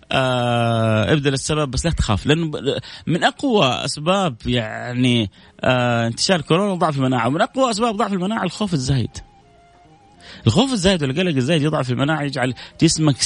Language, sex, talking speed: Arabic, male, 135 wpm